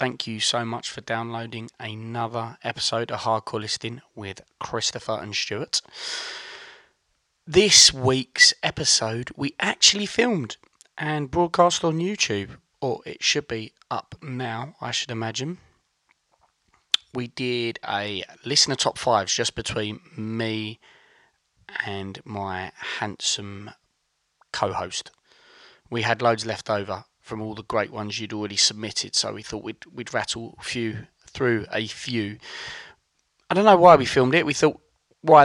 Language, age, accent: English, 20-39, British